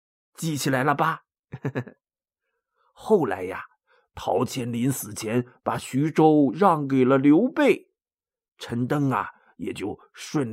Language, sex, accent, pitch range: Chinese, male, native, 125-200 Hz